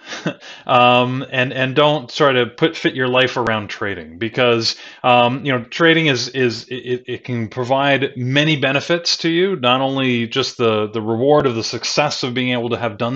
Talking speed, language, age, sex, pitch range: 190 wpm, English, 30-49, male, 115-140 Hz